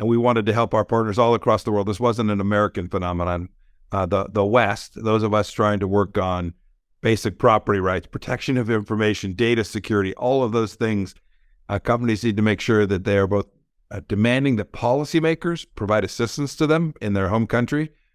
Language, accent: English, American